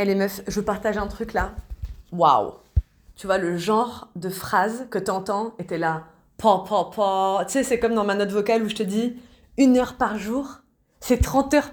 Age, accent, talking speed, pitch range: 20-39, French, 215 wpm, 190-240 Hz